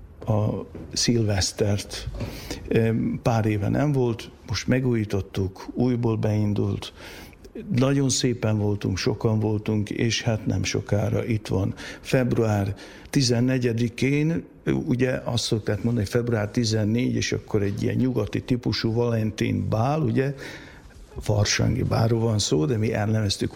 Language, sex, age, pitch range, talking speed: Hungarian, male, 60-79, 105-125 Hz, 115 wpm